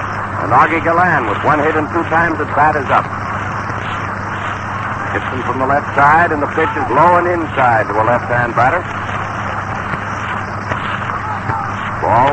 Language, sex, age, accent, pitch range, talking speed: English, male, 60-79, American, 100-130 Hz, 140 wpm